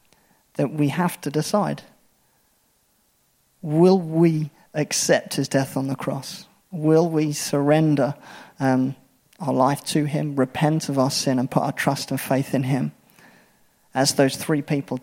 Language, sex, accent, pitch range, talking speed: English, male, British, 135-155 Hz, 150 wpm